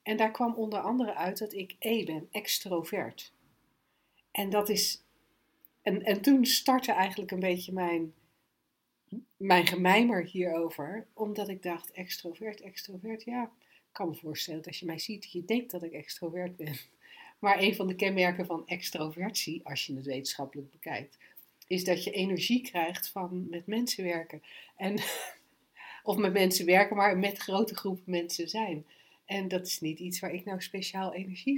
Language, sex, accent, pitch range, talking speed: Dutch, female, Dutch, 170-210 Hz, 170 wpm